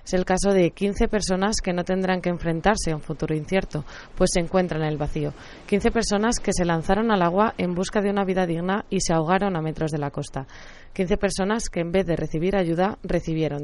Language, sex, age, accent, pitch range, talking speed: Spanish, female, 20-39, Spanish, 160-195 Hz, 230 wpm